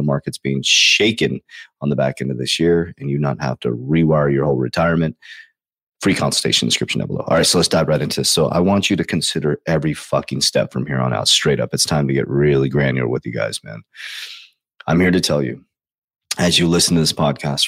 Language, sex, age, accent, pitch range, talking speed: English, male, 30-49, American, 70-85 Hz, 235 wpm